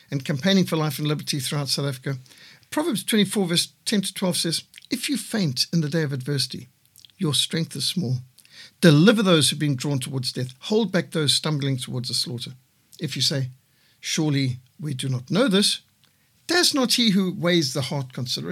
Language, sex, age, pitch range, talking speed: English, male, 60-79, 135-175 Hz, 190 wpm